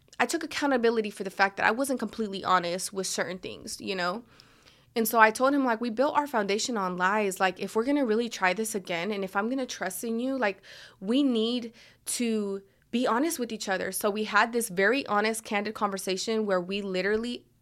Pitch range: 190-230 Hz